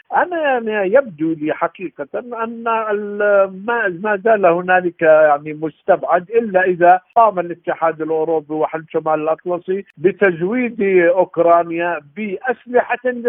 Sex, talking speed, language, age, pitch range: male, 105 wpm, Arabic, 50-69, 155-200 Hz